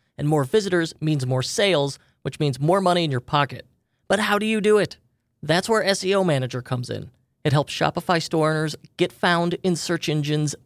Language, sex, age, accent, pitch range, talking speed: English, male, 30-49, American, 140-200 Hz, 195 wpm